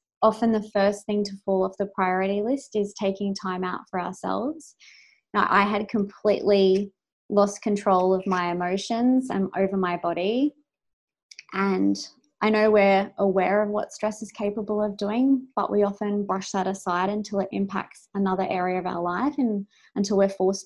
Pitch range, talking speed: 190-215 Hz, 170 wpm